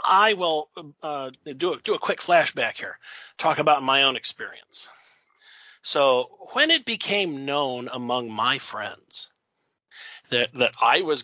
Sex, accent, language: male, American, English